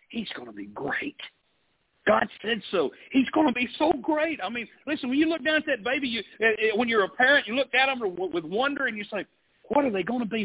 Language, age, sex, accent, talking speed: English, 50-69, male, American, 260 wpm